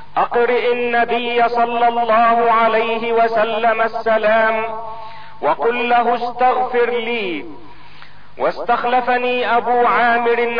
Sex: male